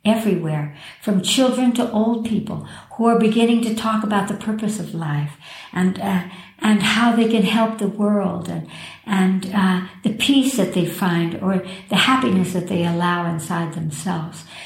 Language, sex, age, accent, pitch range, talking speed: English, male, 60-79, American, 185-220 Hz, 170 wpm